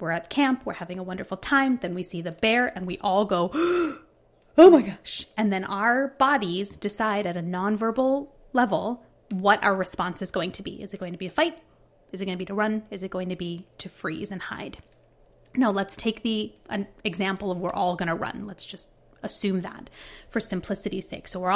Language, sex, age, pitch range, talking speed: English, female, 30-49, 190-250 Hz, 220 wpm